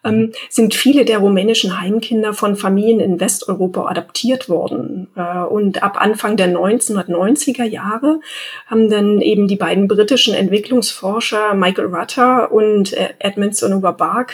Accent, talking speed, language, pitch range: German, 130 wpm, German, 195-240 Hz